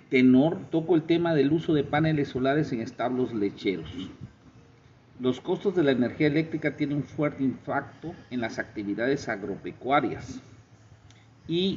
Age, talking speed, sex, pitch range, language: 50-69, 140 wpm, male, 120-150 Hz, Spanish